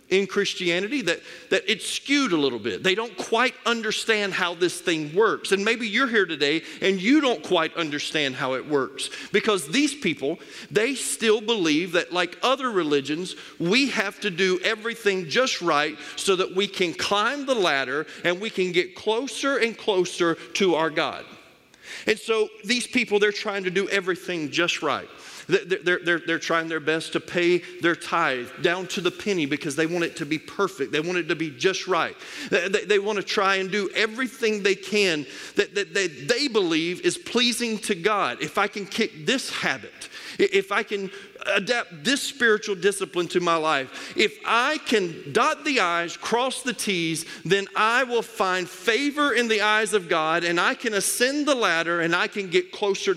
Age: 40-59